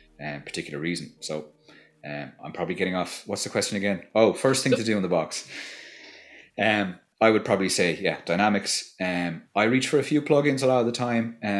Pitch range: 85-110 Hz